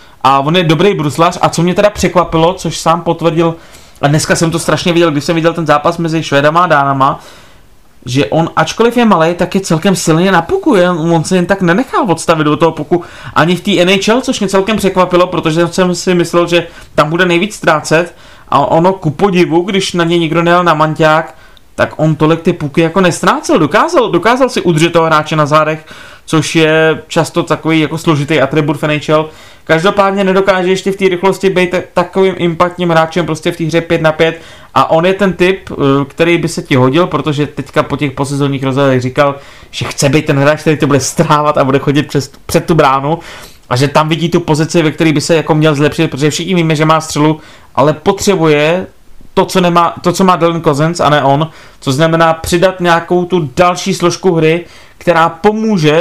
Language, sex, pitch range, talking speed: Czech, male, 155-180 Hz, 200 wpm